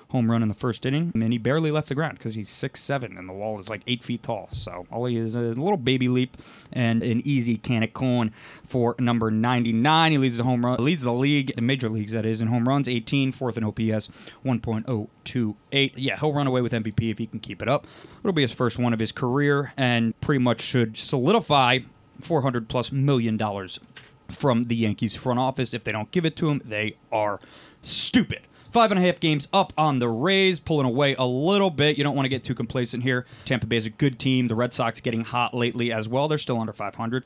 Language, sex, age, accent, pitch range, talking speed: English, male, 20-39, American, 115-140 Hz, 235 wpm